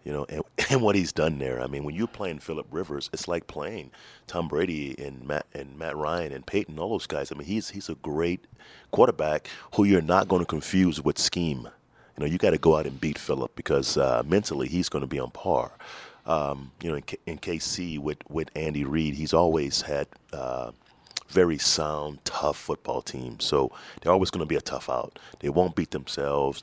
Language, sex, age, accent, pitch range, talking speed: English, male, 30-49, American, 70-80 Hz, 220 wpm